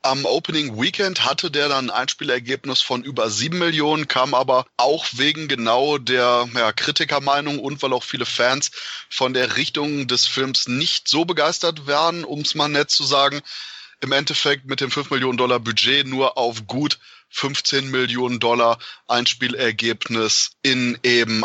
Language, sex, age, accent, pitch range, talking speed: German, male, 20-39, German, 125-150 Hz, 160 wpm